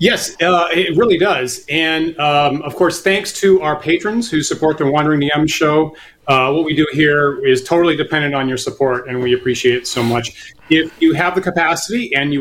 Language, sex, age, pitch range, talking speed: English, male, 30-49, 130-160 Hz, 210 wpm